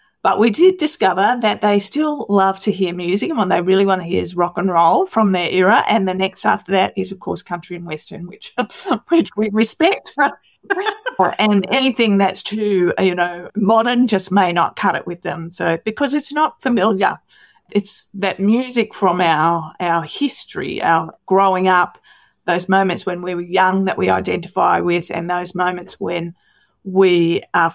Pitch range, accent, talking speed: 175-215 Hz, Australian, 180 wpm